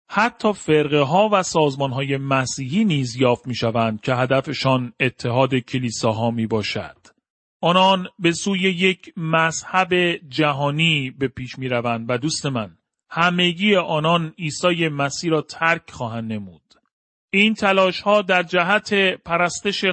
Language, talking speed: Persian, 130 wpm